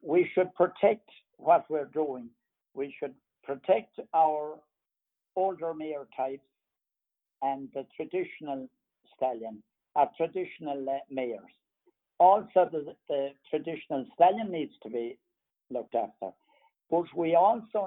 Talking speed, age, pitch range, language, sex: 110 wpm, 60-79, 135-180 Hz, English, male